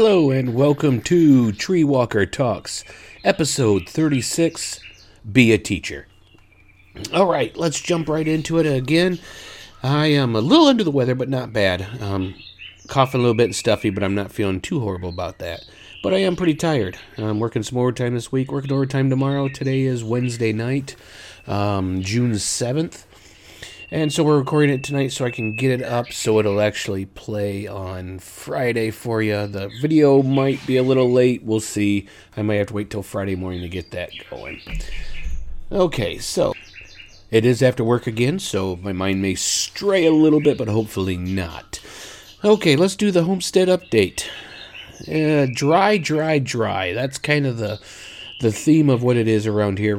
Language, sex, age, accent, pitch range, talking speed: English, male, 40-59, American, 100-140 Hz, 175 wpm